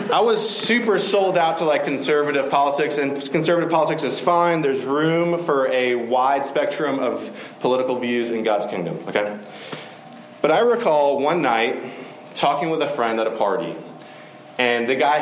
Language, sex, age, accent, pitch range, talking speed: English, male, 30-49, American, 105-155 Hz, 165 wpm